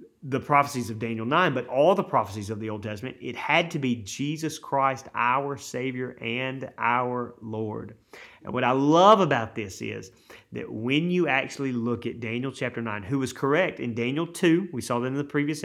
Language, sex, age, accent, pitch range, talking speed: English, male, 30-49, American, 120-160 Hz, 200 wpm